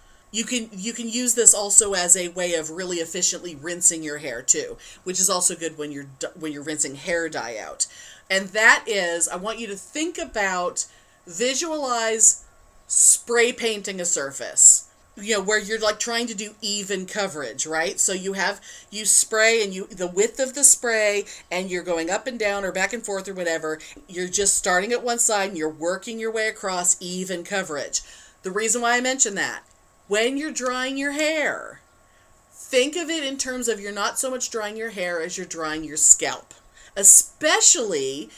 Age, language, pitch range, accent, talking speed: 40-59, English, 180-240 Hz, American, 190 wpm